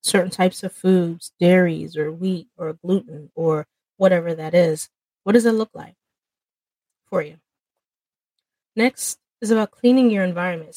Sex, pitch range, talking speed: female, 170-215 Hz, 145 wpm